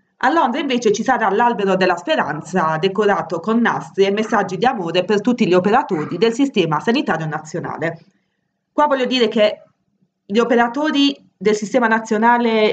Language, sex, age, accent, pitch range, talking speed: Italian, female, 30-49, native, 185-235 Hz, 150 wpm